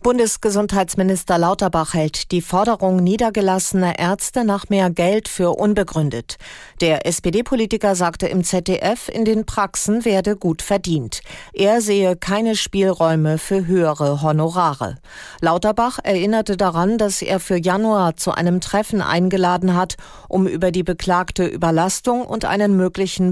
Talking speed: 130 wpm